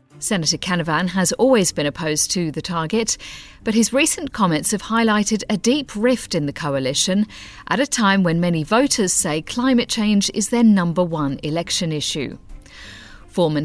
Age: 50-69